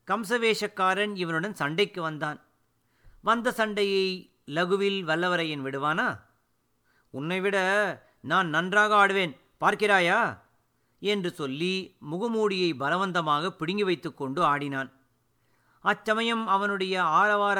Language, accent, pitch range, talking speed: Tamil, native, 150-205 Hz, 90 wpm